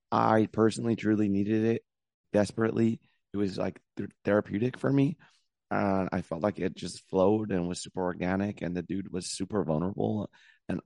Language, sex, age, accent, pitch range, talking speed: English, male, 30-49, American, 95-115 Hz, 165 wpm